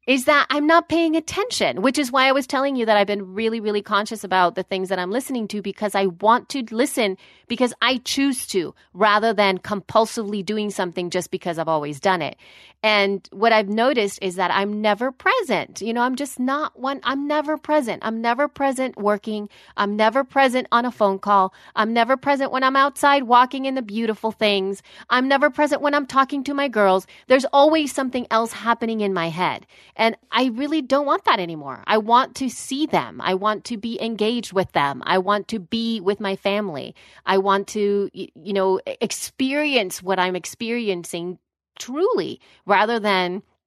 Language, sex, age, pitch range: English, female, 30-49, 185-265 Hz